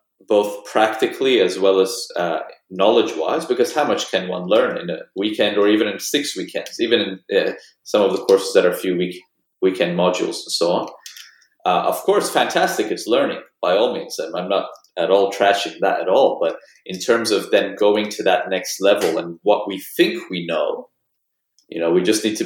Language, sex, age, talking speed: English, male, 30-49, 210 wpm